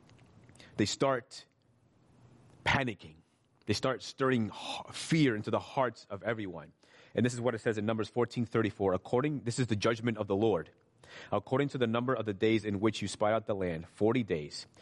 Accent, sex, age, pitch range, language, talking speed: American, male, 30-49, 105-130 Hz, English, 190 wpm